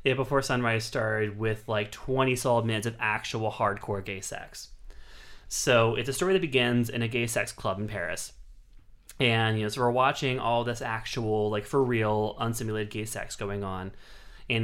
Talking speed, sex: 185 wpm, male